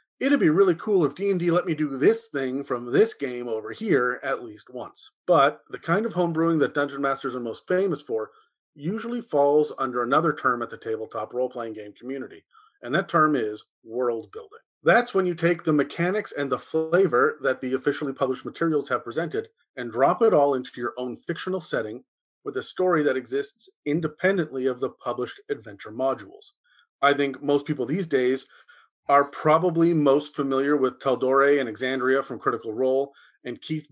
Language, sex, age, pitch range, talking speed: English, male, 30-49, 130-185 Hz, 185 wpm